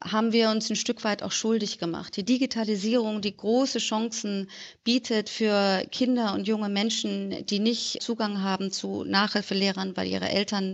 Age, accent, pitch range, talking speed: 40-59, German, 190-225 Hz, 160 wpm